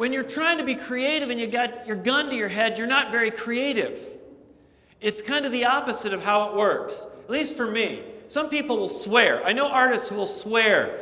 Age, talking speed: 40-59, 225 wpm